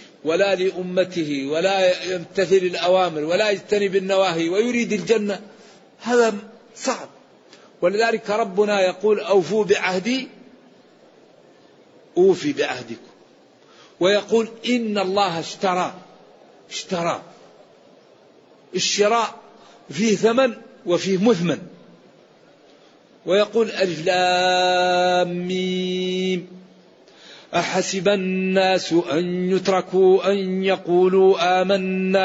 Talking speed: 70 wpm